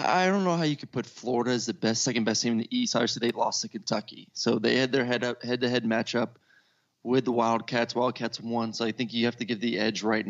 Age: 20-39